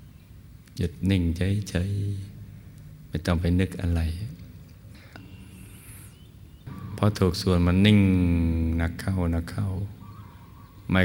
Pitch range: 90-105 Hz